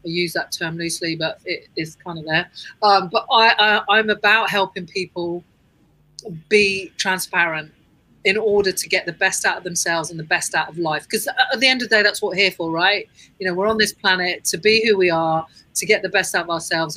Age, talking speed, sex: 40-59, 235 wpm, female